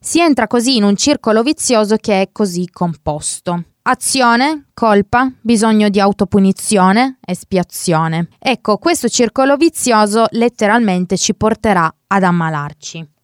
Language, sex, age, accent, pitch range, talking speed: Italian, female, 20-39, native, 185-235 Hz, 120 wpm